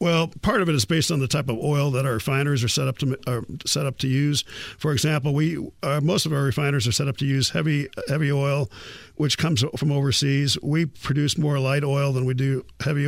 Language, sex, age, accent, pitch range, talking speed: English, male, 50-69, American, 130-150 Hz, 240 wpm